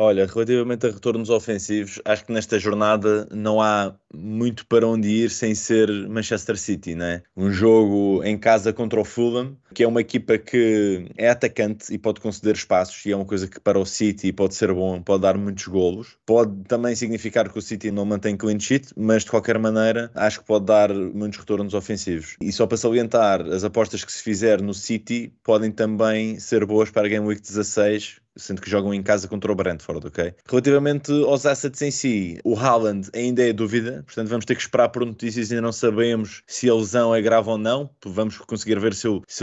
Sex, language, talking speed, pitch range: male, Portuguese, 205 wpm, 100-115 Hz